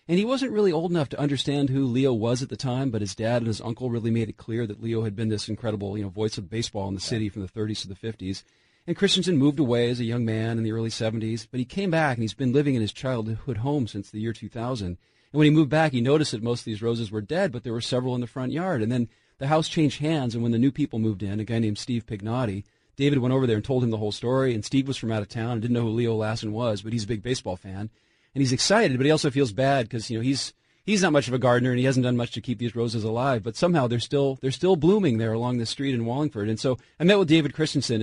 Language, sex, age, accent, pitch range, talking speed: English, male, 40-59, American, 110-145 Hz, 300 wpm